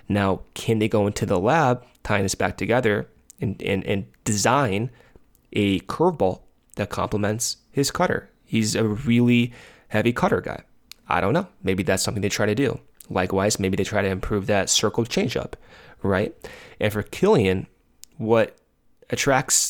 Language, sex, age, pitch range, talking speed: English, male, 20-39, 100-125 Hz, 160 wpm